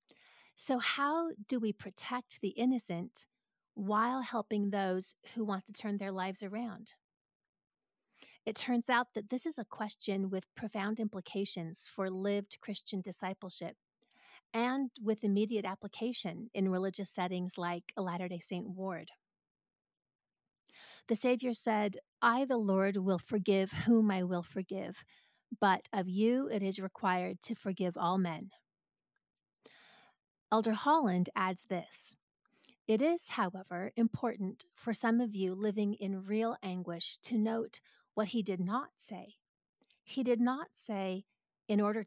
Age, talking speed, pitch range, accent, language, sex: 30-49, 135 wpm, 190-225 Hz, American, English, female